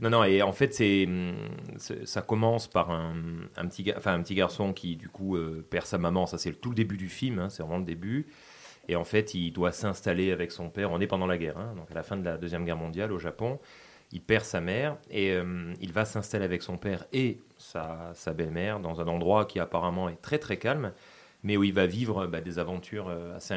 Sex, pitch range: male, 85-110 Hz